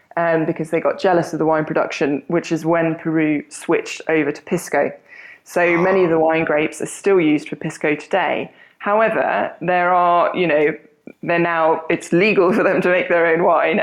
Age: 20-39